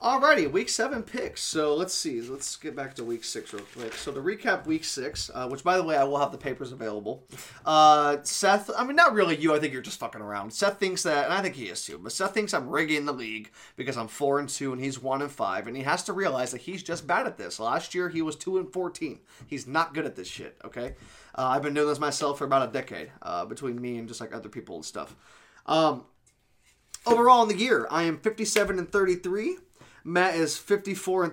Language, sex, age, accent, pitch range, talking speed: English, male, 20-39, American, 135-185 Hz, 245 wpm